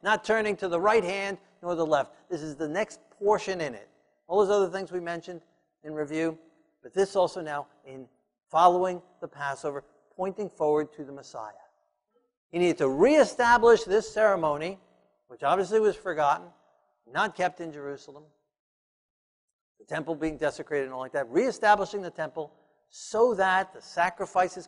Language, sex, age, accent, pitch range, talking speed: English, male, 50-69, American, 145-205 Hz, 160 wpm